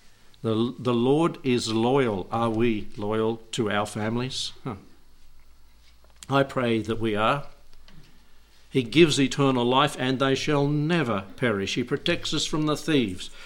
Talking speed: 140 wpm